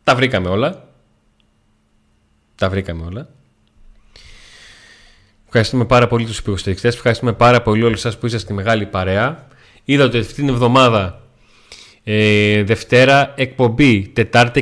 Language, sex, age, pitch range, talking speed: Greek, male, 30-49, 105-130 Hz, 125 wpm